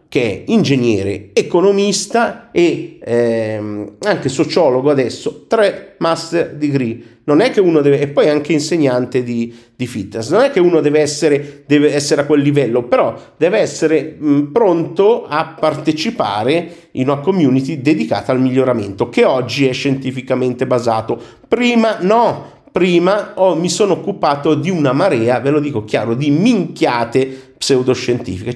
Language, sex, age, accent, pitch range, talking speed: Italian, male, 50-69, native, 115-160 Hz, 145 wpm